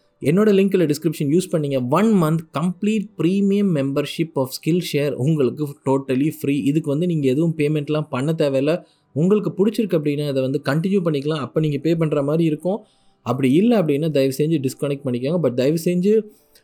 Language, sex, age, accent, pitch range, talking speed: Tamil, male, 20-39, native, 130-165 Hz, 165 wpm